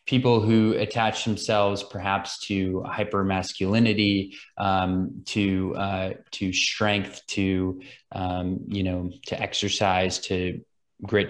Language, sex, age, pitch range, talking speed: English, male, 20-39, 95-110 Hz, 105 wpm